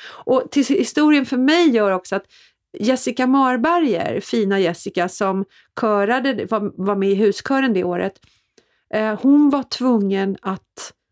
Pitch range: 185-235 Hz